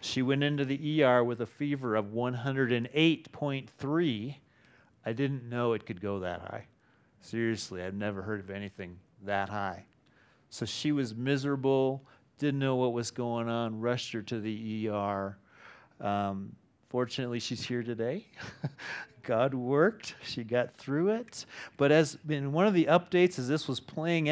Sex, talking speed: male, 155 wpm